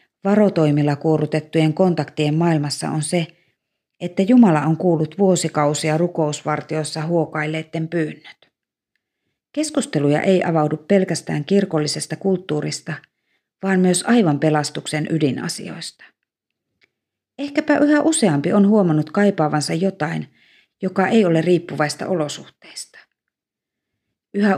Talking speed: 95 wpm